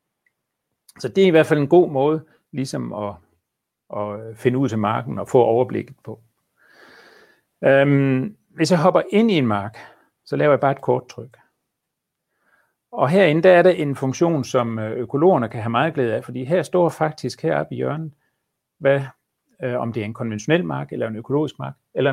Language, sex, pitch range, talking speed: Danish, male, 115-160 Hz, 180 wpm